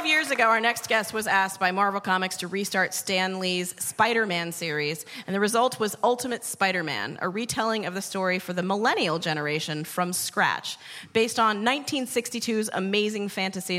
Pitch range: 185-230 Hz